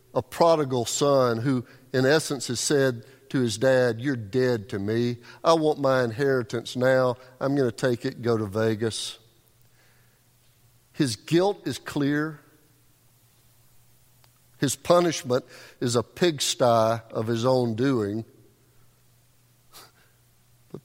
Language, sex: English, male